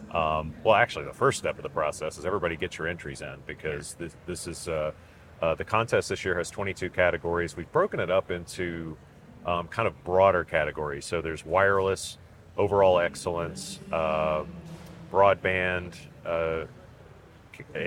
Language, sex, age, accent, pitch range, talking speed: English, male, 40-59, American, 80-95 Hz, 155 wpm